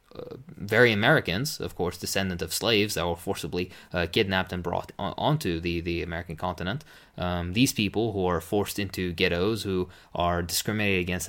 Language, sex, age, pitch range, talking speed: English, male, 20-39, 90-110 Hz, 170 wpm